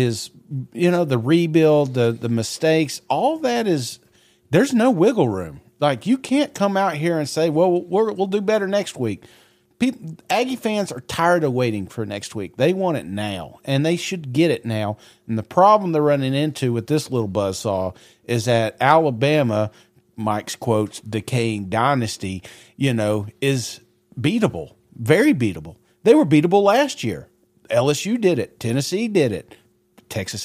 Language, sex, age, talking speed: English, male, 40-59, 170 wpm